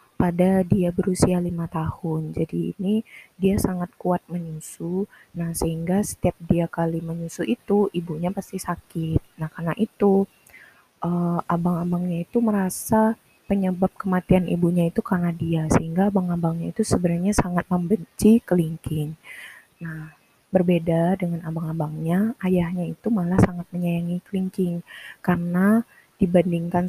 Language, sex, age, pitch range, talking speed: Indonesian, female, 20-39, 165-190 Hz, 120 wpm